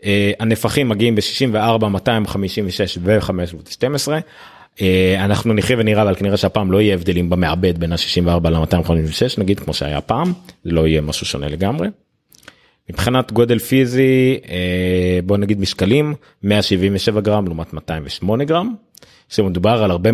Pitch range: 85-110 Hz